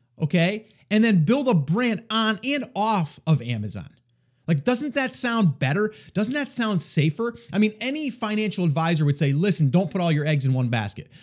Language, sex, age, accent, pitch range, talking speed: English, male, 30-49, American, 135-185 Hz, 190 wpm